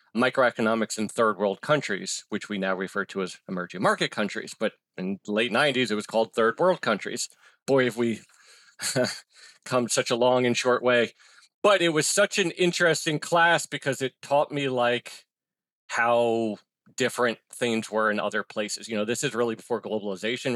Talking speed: 180 wpm